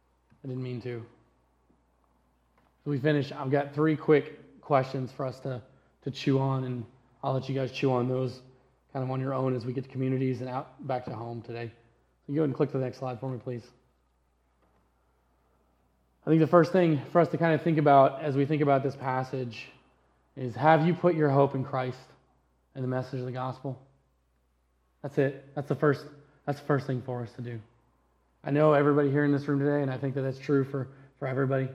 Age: 20-39